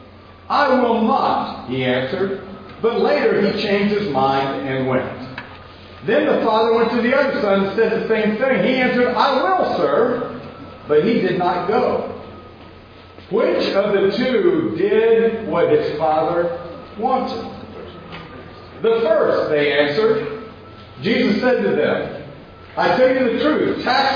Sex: male